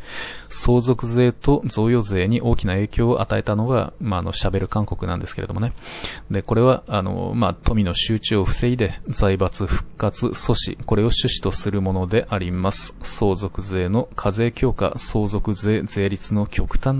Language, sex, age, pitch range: Japanese, male, 20-39, 100-125 Hz